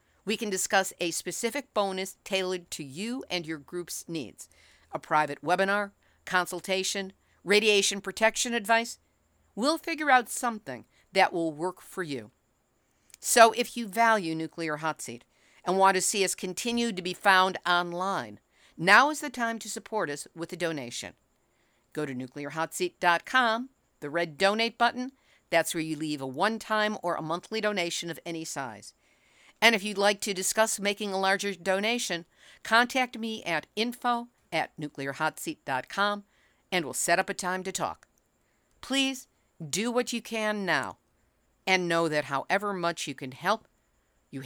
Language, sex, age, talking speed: English, female, 50-69, 155 wpm